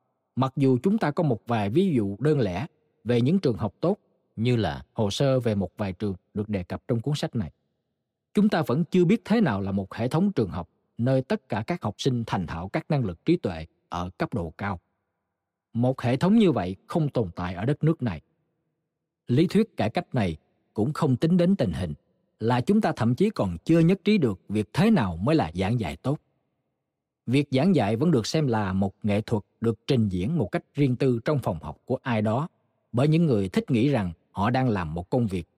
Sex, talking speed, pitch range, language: male, 230 wpm, 100-155 Hz, Vietnamese